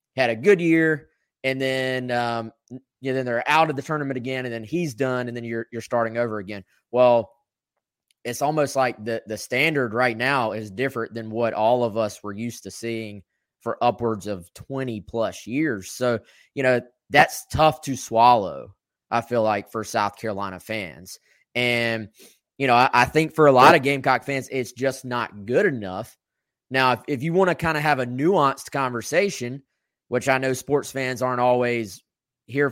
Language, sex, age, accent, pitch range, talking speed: English, male, 20-39, American, 110-135 Hz, 190 wpm